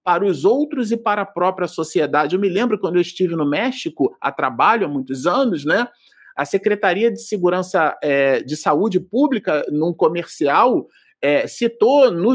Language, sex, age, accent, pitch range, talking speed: Portuguese, male, 40-59, Brazilian, 160-235 Hz, 170 wpm